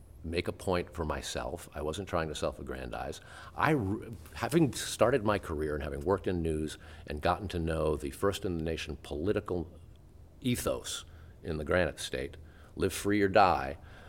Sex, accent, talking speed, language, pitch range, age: male, American, 155 wpm, English, 80-105 Hz, 50-69